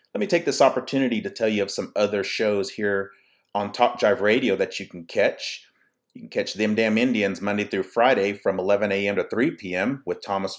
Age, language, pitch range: 30-49, English, 100-140 Hz